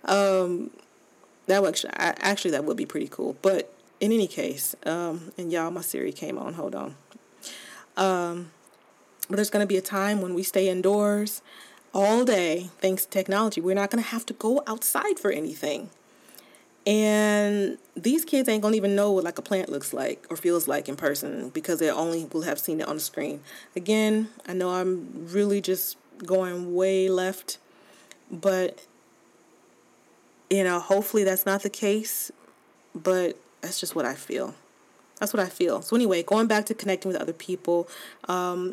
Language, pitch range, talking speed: English, 170-210 Hz, 175 wpm